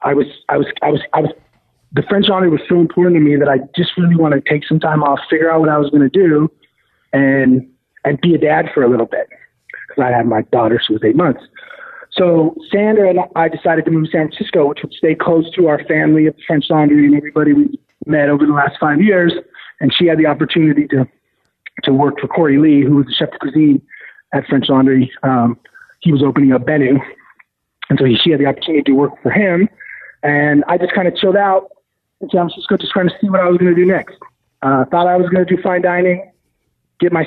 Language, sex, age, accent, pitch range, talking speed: English, male, 40-59, American, 140-175 Hz, 245 wpm